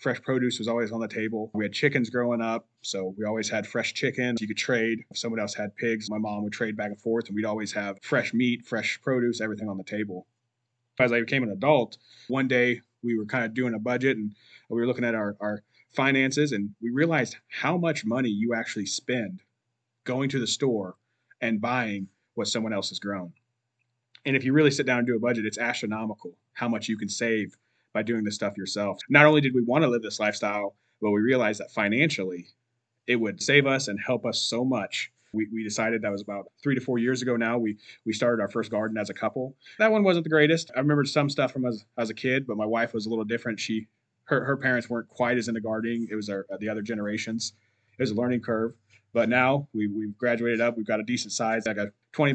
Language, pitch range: English, 110-125 Hz